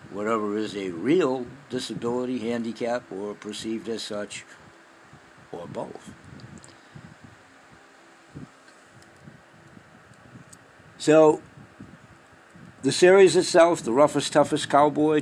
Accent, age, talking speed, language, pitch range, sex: American, 60-79, 80 wpm, English, 105-140 Hz, male